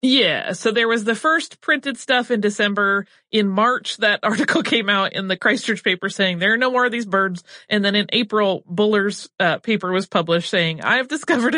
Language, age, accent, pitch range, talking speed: English, 30-49, American, 180-240 Hz, 205 wpm